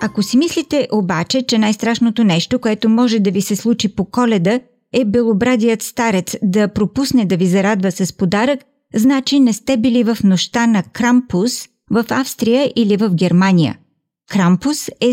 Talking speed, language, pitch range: 160 wpm, Bulgarian, 195-250 Hz